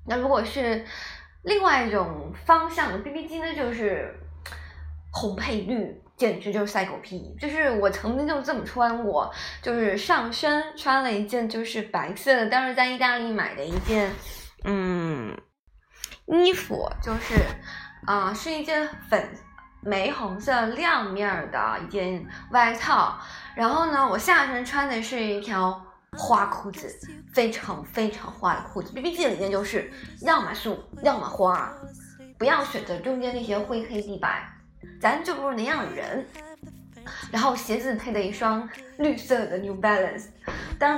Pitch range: 205-290 Hz